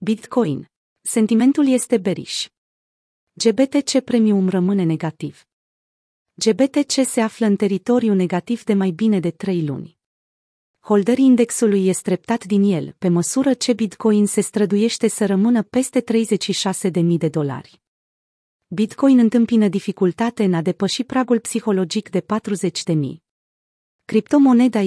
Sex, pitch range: female, 180-225 Hz